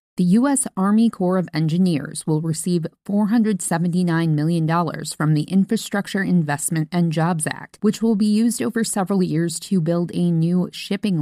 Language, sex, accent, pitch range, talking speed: English, female, American, 155-195 Hz, 155 wpm